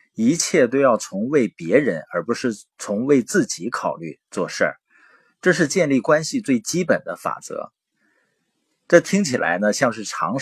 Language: Chinese